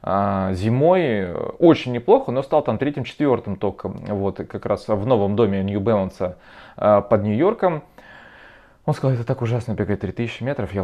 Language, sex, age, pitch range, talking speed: Russian, male, 20-39, 100-135 Hz, 140 wpm